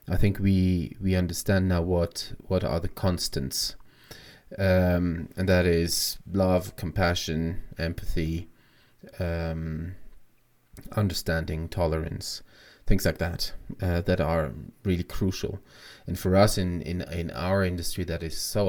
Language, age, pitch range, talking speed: English, 30-49, 85-95 Hz, 130 wpm